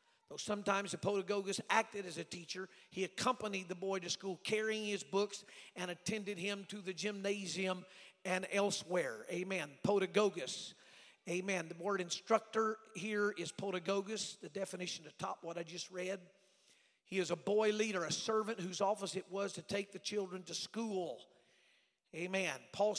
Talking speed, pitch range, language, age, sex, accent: 155 wpm, 185-210 Hz, English, 50-69, male, American